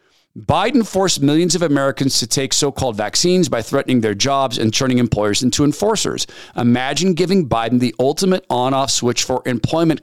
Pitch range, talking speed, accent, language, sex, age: 135-190 Hz, 160 wpm, American, English, male, 50-69